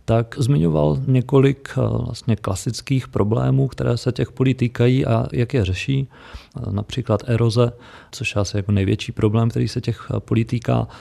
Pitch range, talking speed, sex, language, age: 110-125 Hz, 155 wpm, male, Czech, 40-59